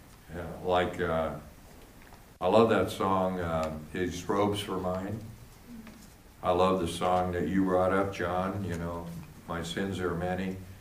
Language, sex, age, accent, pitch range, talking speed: English, male, 60-79, American, 90-110 Hz, 150 wpm